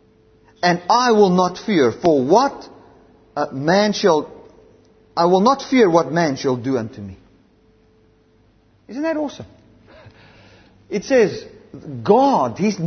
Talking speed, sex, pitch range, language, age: 120 wpm, male, 110-185 Hz, English, 50-69